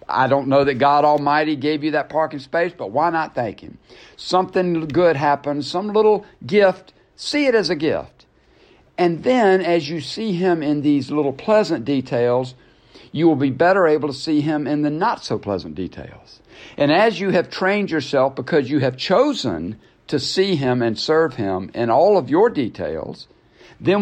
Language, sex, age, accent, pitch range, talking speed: English, male, 60-79, American, 110-155 Hz, 180 wpm